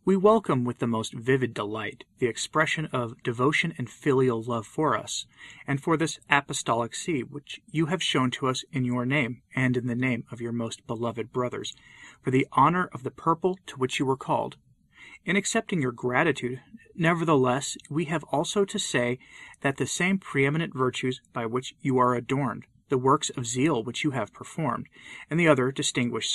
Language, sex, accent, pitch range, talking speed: English, male, American, 125-160 Hz, 185 wpm